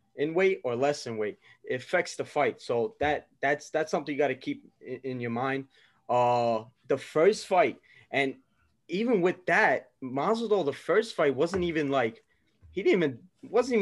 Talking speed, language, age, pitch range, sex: 180 wpm, English, 20-39, 120-145 Hz, male